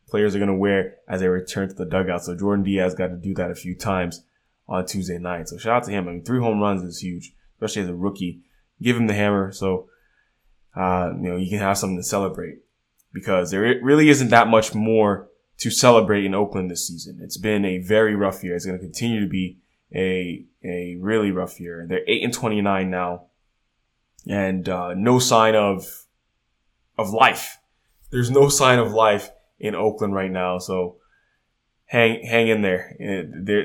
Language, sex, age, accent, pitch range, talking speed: English, male, 20-39, American, 90-110 Hz, 200 wpm